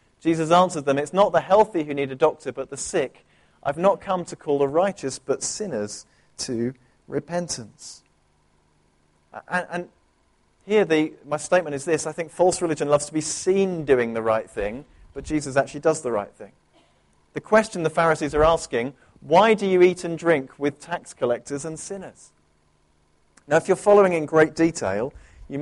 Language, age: English, 40-59